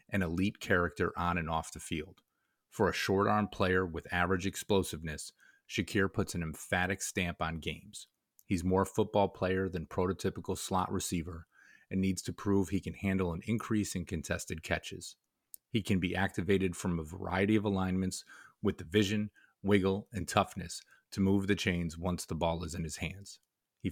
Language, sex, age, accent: English, male, 30-49, American